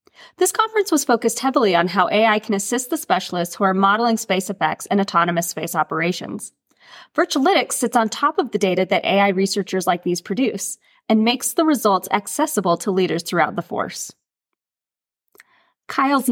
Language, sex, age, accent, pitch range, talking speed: English, female, 30-49, American, 190-260 Hz, 165 wpm